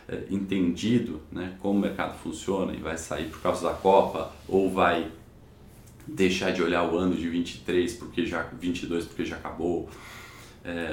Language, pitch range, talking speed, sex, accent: Portuguese, 85-100 Hz, 165 wpm, male, Brazilian